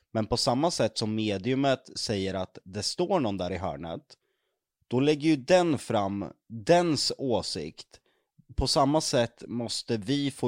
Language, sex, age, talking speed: Swedish, male, 20-39, 155 wpm